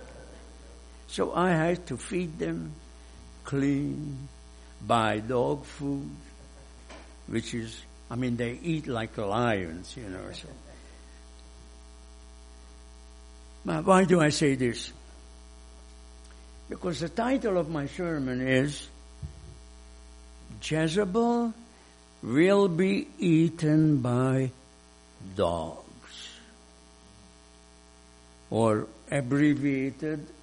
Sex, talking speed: male, 85 wpm